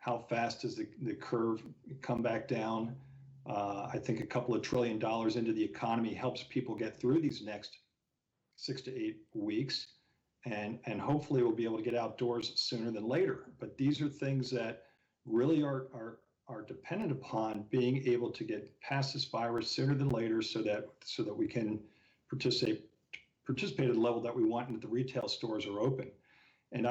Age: 50-69